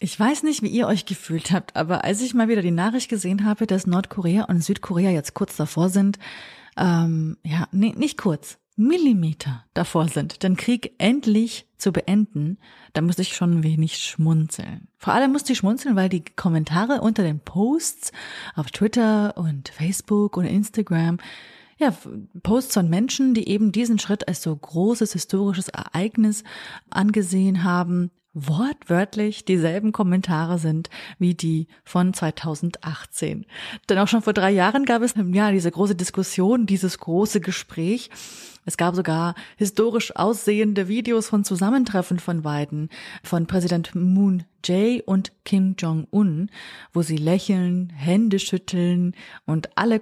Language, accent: German, German